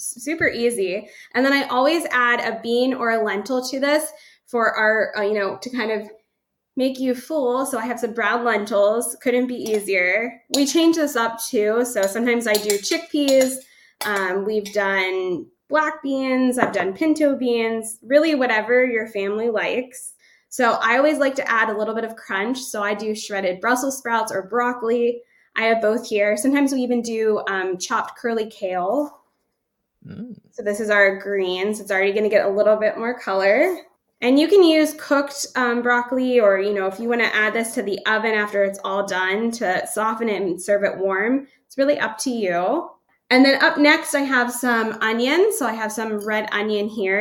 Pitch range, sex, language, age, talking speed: 210-255 Hz, female, English, 20-39, 195 wpm